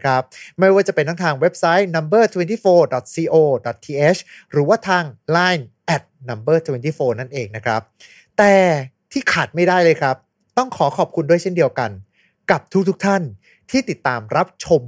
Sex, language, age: male, Thai, 20-39